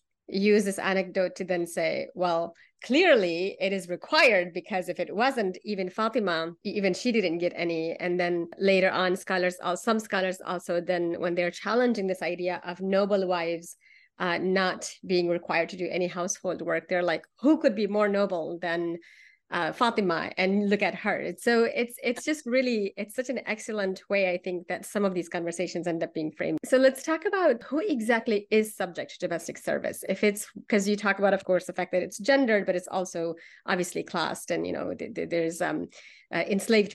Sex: female